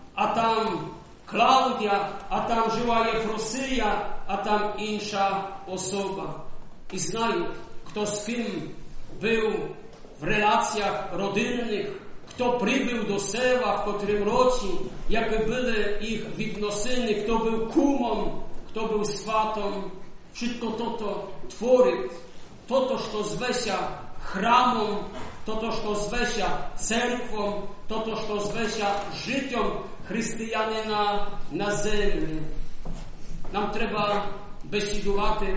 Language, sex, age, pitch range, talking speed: Polish, male, 50-69, 205-225 Hz, 105 wpm